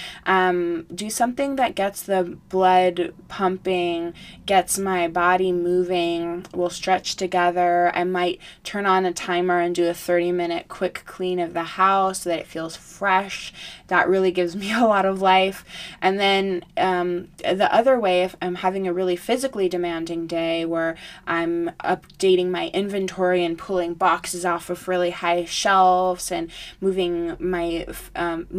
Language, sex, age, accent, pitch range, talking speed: English, female, 20-39, American, 170-190 Hz, 155 wpm